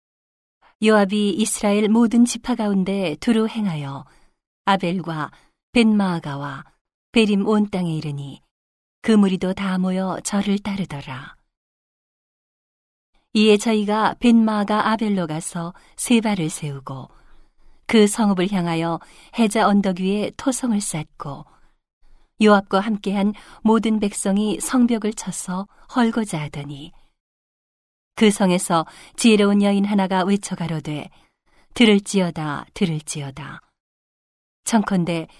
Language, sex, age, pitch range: Korean, female, 40-59, 165-215 Hz